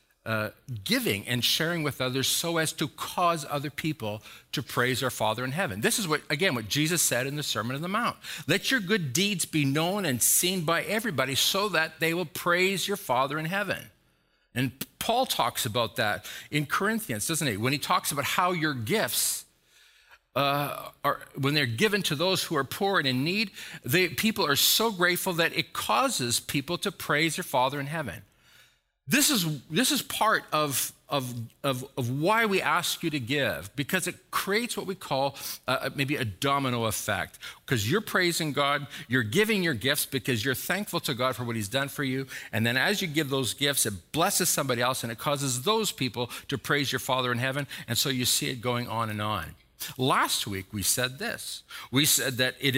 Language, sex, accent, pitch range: English, male, American, 125-175 Hz